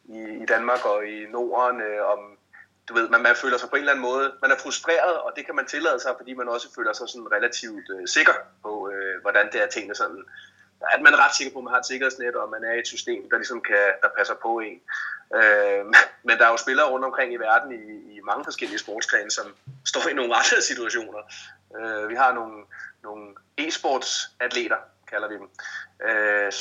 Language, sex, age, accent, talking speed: Danish, male, 30-49, native, 215 wpm